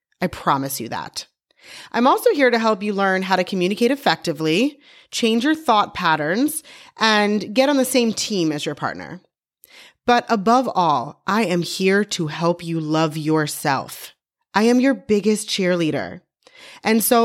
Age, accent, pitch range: 30-49, American, 170-245 Hz